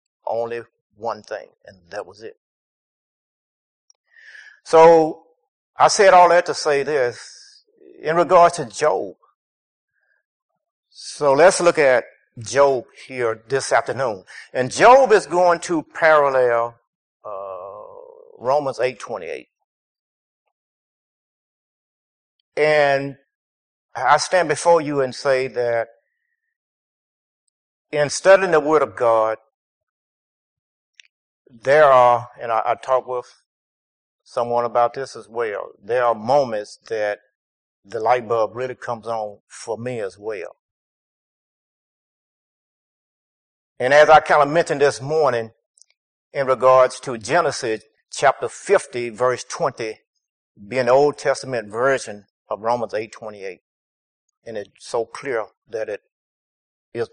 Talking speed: 110 wpm